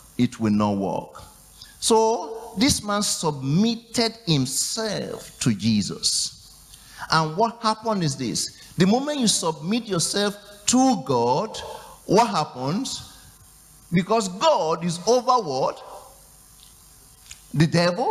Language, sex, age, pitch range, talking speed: English, male, 50-69, 160-230 Hz, 105 wpm